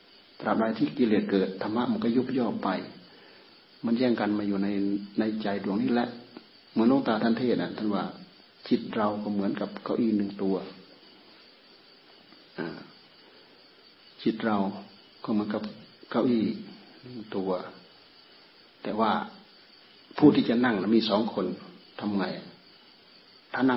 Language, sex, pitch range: Thai, male, 100-125 Hz